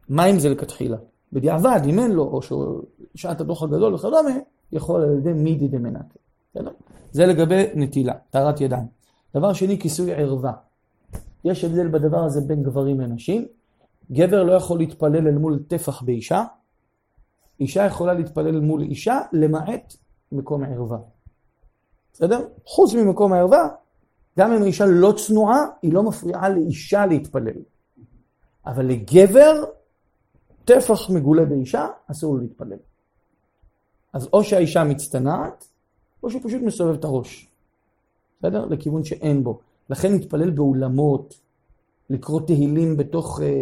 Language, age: Hebrew, 40-59